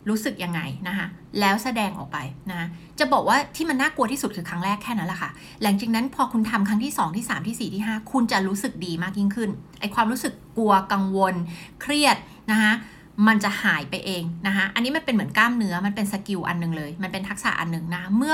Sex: female